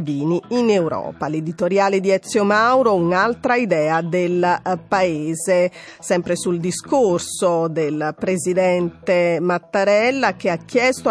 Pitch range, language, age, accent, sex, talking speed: 170-225 Hz, Italian, 40-59, native, female, 105 wpm